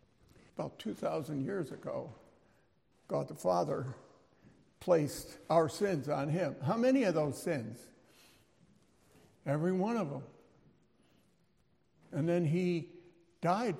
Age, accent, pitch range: 60-79, American, 165-205 Hz